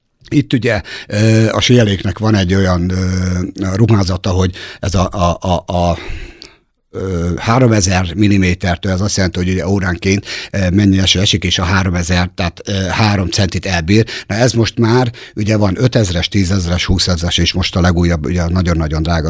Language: Hungarian